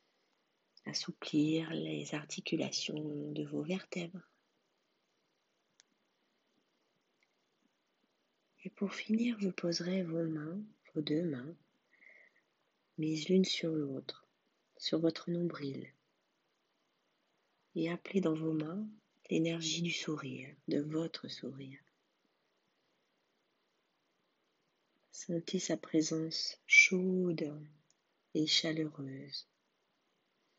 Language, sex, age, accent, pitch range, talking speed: French, female, 40-59, French, 155-180 Hz, 80 wpm